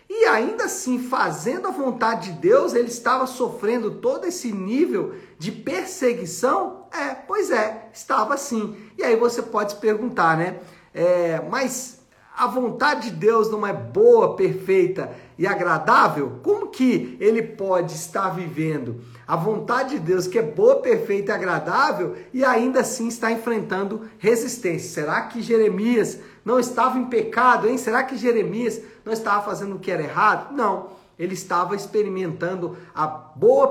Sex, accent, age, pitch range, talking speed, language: male, Brazilian, 50-69, 190-255 Hz, 155 wpm, Portuguese